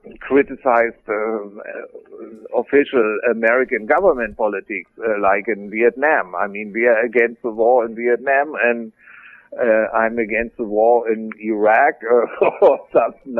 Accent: German